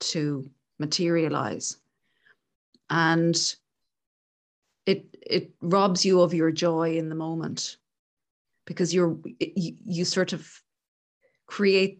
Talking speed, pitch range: 100 wpm, 155-195 Hz